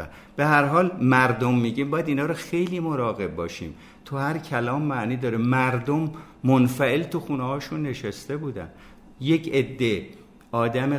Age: 60-79